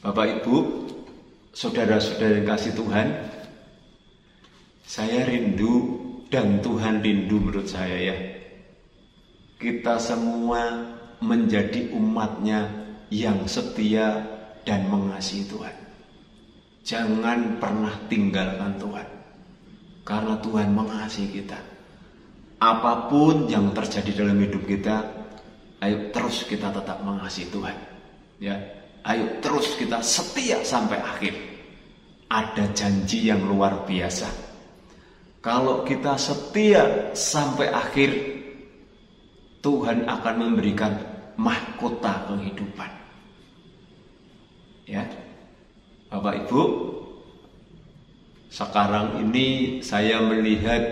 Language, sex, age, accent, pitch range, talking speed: Indonesian, male, 30-49, native, 100-120 Hz, 85 wpm